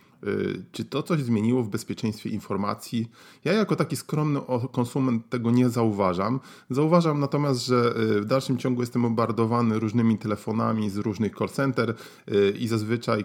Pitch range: 100-125 Hz